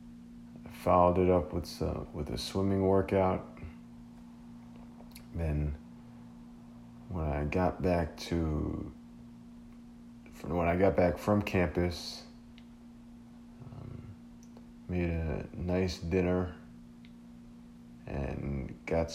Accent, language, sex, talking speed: American, English, male, 90 wpm